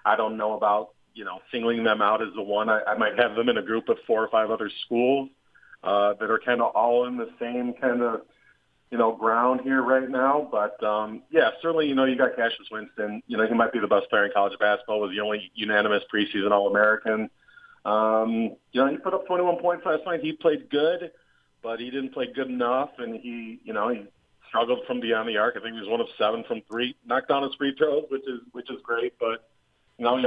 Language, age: English, 30-49